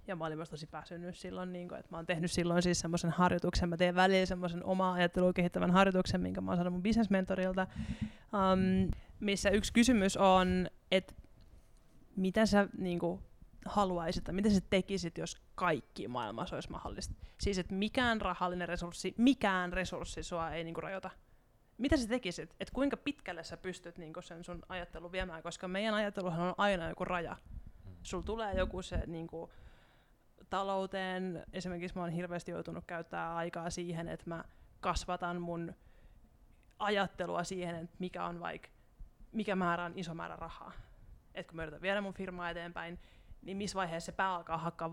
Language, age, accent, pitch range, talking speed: Finnish, 20-39, native, 170-195 Hz, 170 wpm